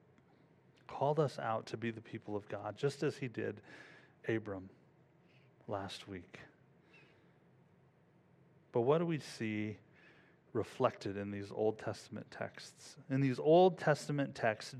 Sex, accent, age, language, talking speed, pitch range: male, American, 30-49, English, 130 wpm, 110-150 Hz